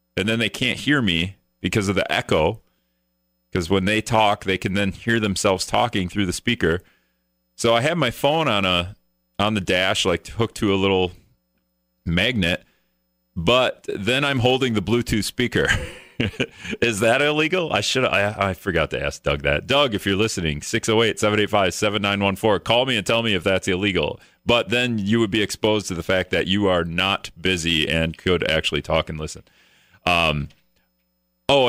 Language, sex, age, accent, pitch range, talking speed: English, male, 40-59, American, 85-115 Hz, 175 wpm